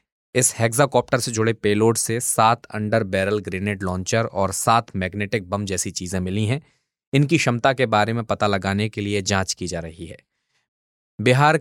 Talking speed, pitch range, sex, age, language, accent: 160 wpm, 105-120 Hz, male, 20-39, Hindi, native